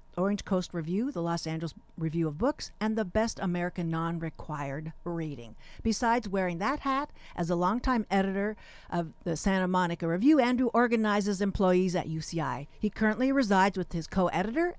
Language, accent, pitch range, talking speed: English, American, 170-220 Hz, 160 wpm